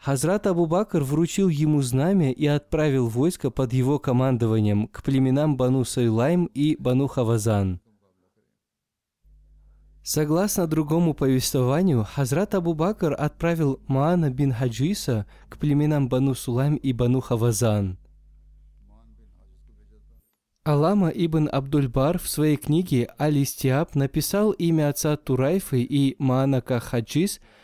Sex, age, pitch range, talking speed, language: male, 20-39, 120-155 Hz, 110 wpm, Russian